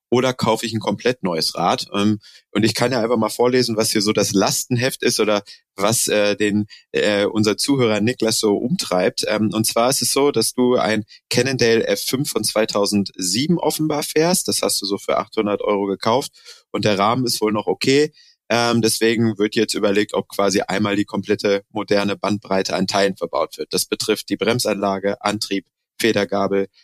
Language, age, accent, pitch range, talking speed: German, 30-49, German, 100-120 Hz, 175 wpm